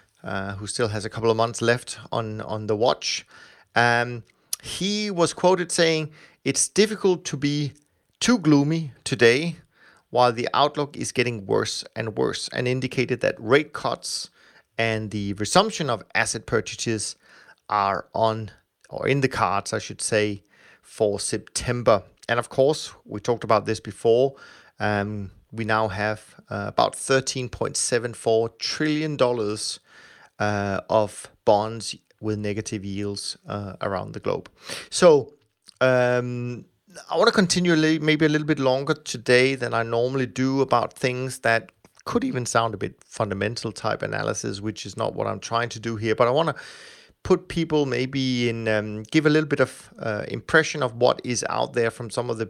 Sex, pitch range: male, 110-135 Hz